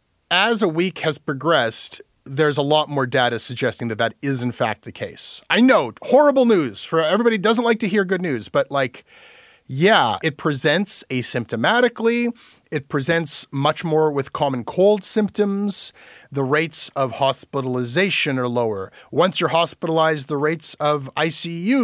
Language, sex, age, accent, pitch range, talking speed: English, male, 30-49, American, 135-190 Hz, 160 wpm